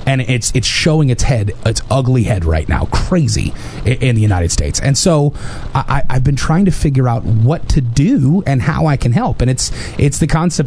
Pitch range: 115-145 Hz